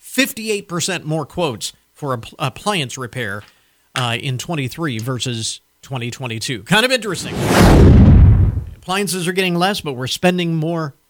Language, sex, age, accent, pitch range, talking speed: English, male, 40-59, American, 130-200 Hz, 120 wpm